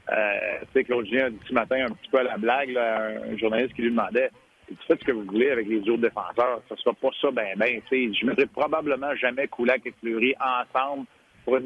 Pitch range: 125-165 Hz